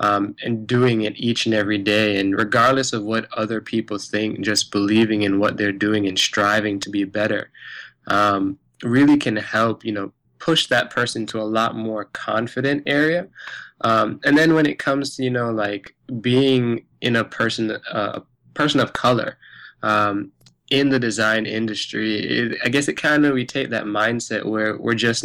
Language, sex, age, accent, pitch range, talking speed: English, male, 20-39, American, 105-120 Hz, 185 wpm